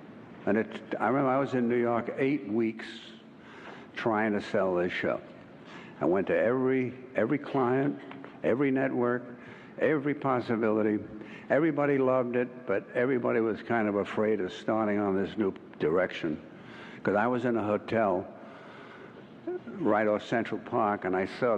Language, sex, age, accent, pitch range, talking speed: English, male, 60-79, American, 110-130 Hz, 145 wpm